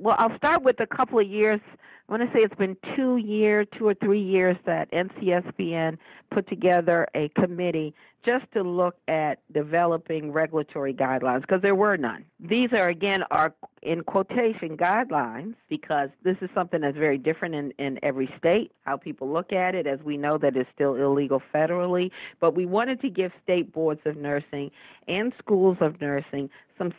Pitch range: 150-195 Hz